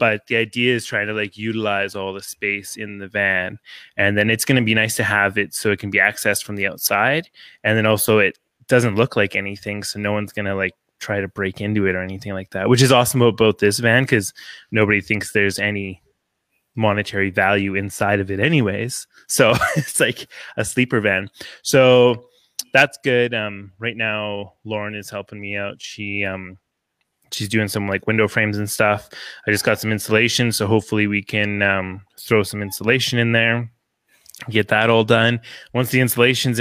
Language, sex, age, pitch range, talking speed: English, male, 20-39, 100-120 Hz, 200 wpm